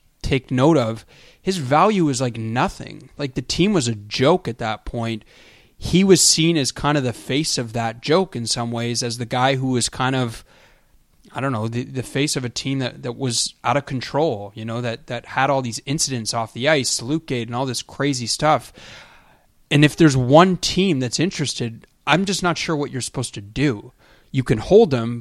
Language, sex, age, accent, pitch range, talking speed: English, male, 20-39, American, 120-145 Hz, 215 wpm